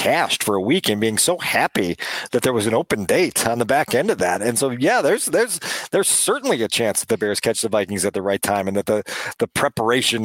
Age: 40-59